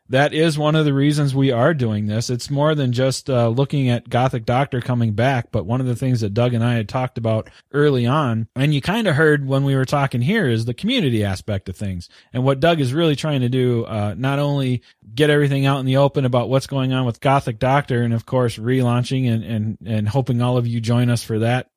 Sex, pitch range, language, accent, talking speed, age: male, 115-145 Hz, English, American, 250 wpm, 30-49